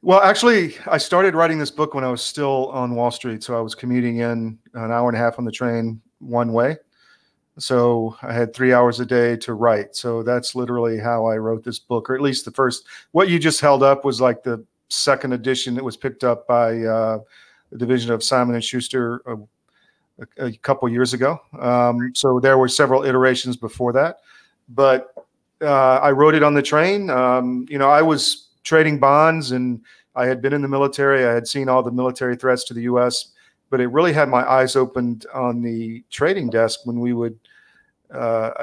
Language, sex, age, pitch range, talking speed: English, male, 40-59, 120-135 Hz, 205 wpm